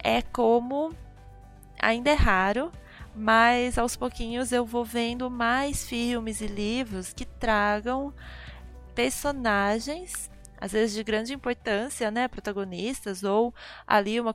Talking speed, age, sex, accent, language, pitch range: 115 wpm, 20-39, female, Brazilian, Portuguese, 200-240 Hz